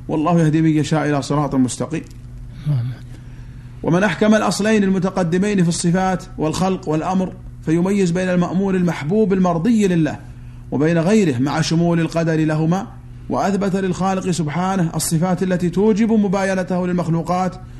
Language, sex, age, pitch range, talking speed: Arabic, male, 40-59, 150-185 Hz, 120 wpm